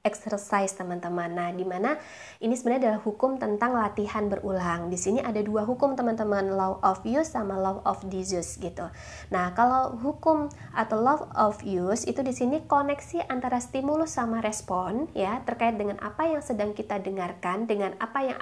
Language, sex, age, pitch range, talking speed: Indonesian, female, 20-39, 200-255 Hz, 165 wpm